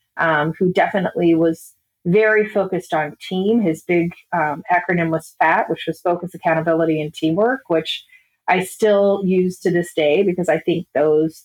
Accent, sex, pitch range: American, female, 160-195 Hz